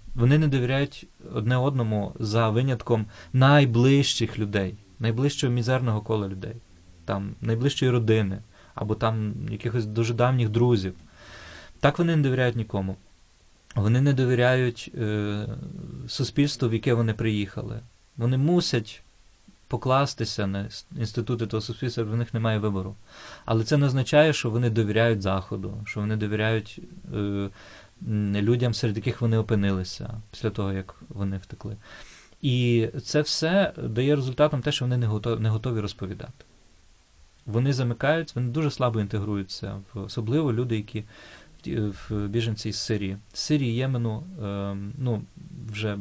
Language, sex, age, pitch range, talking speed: Ukrainian, male, 20-39, 105-125 Hz, 135 wpm